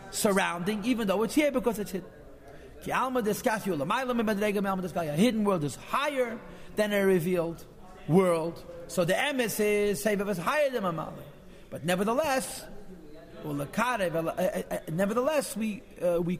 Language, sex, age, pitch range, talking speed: English, male, 40-59, 180-235 Hz, 95 wpm